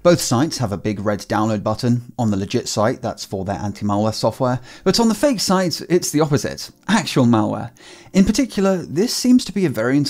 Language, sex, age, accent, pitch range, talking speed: English, male, 30-49, British, 105-150 Hz, 210 wpm